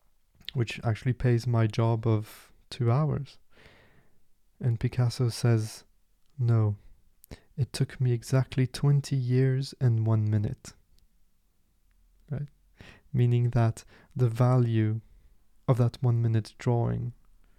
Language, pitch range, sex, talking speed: English, 105-130 Hz, male, 105 wpm